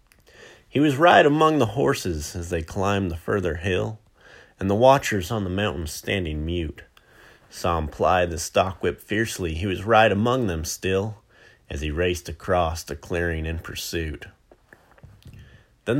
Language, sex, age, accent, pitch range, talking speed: English, male, 30-49, American, 85-110 Hz, 160 wpm